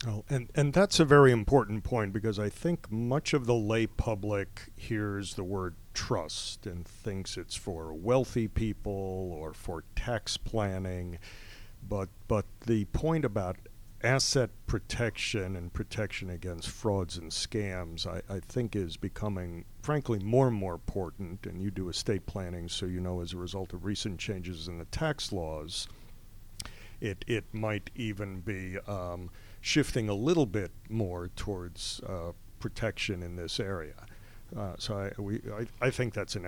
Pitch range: 90-110 Hz